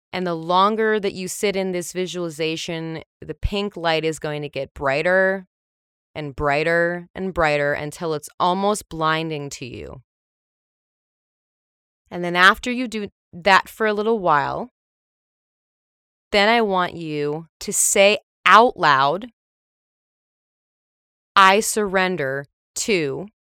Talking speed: 120 wpm